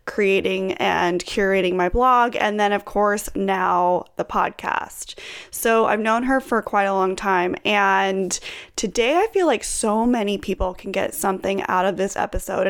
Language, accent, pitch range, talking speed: English, American, 195-235 Hz, 170 wpm